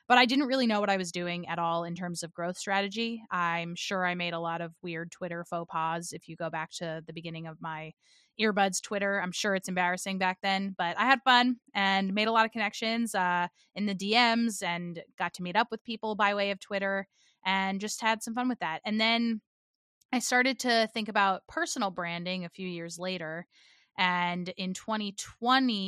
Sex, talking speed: female, 215 wpm